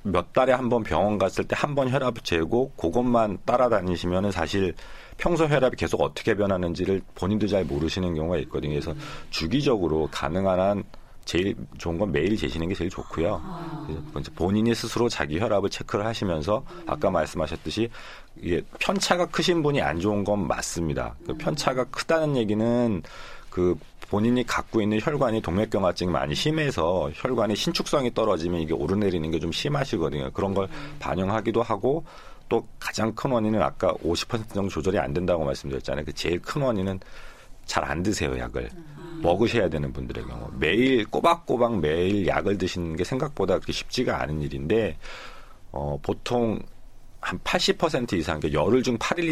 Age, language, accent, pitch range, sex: 40-59, Korean, native, 80-115 Hz, male